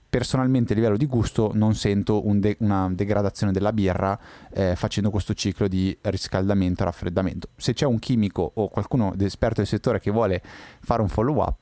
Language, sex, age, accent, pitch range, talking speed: Italian, male, 20-39, native, 95-120 Hz, 190 wpm